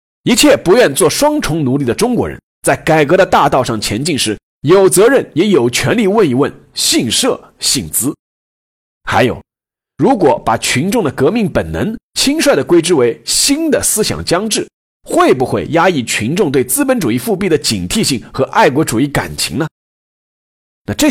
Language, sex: Chinese, male